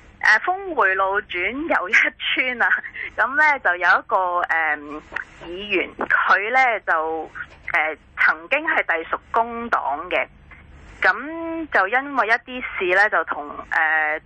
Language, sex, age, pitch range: Chinese, female, 20-39, 175-260 Hz